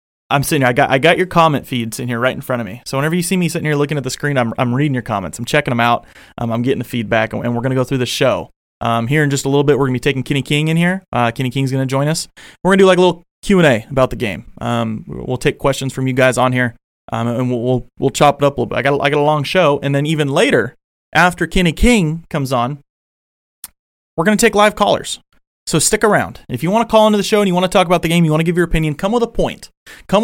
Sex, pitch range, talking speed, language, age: male, 125-170 Hz, 315 wpm, English, 30-49